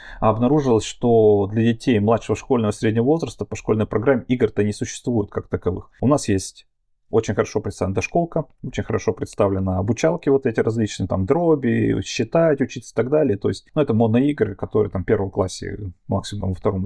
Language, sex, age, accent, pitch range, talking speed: Russian, male, 30-49, native, 100-125 Hz, 180 wpm